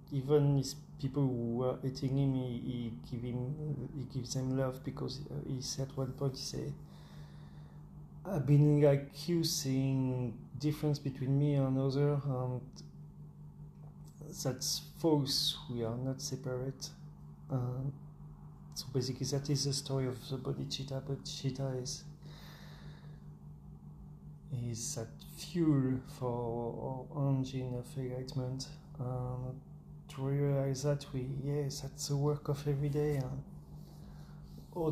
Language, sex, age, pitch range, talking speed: English, male, 30-49, 135-150 Hz, 125 wpm